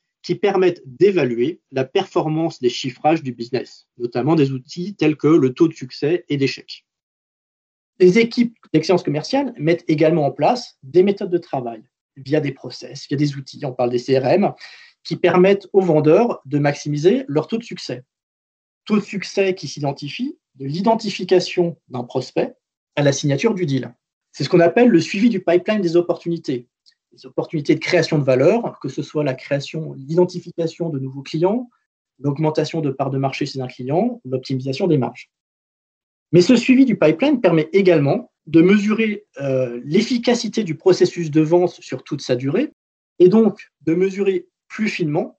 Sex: male